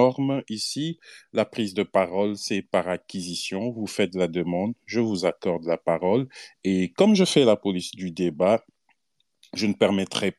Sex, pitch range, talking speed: male, 90-110 Hz, 160 wpm